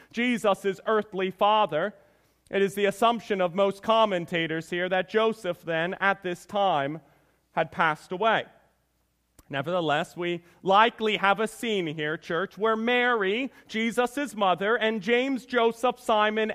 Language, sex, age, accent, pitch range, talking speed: English, male, 40-59, American, 185-245 Hz, 130 wpm